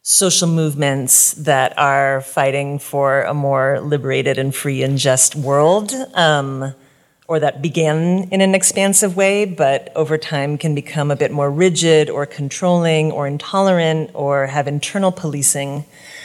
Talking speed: 145 wpm